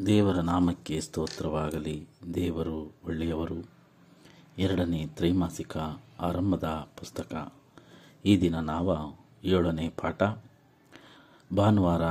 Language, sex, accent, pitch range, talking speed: Kannada, male, native, 85-105 Hz, 75 wpm